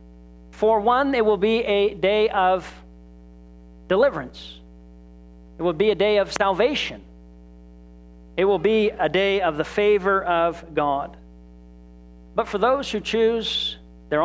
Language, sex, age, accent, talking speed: English, male, 50-69, American, 135 wpm